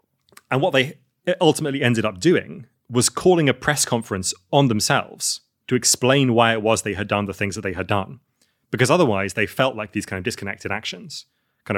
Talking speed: 200 wpm